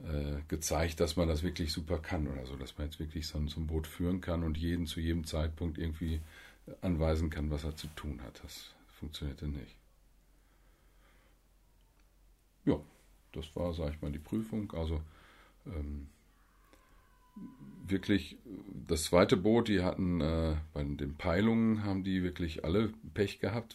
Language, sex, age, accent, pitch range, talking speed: German, male, 40-59, German, 80-95 Hz, 150 wpm